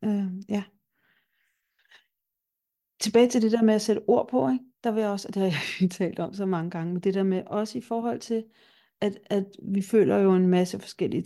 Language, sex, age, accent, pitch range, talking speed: Danish, female, 40-59, native, 185-215 Hz, 205 wpm